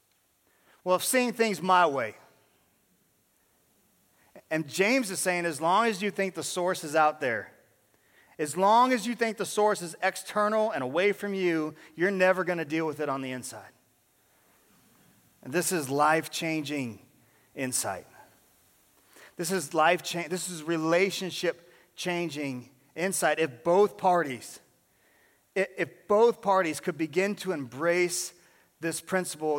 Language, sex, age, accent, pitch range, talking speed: English, male, 40-59, American, 160-205 Hz, 140 wpm